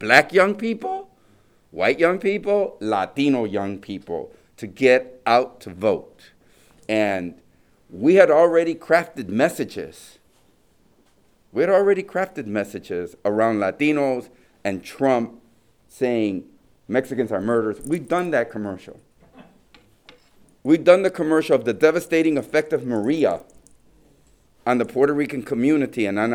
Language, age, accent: English, 50-69, American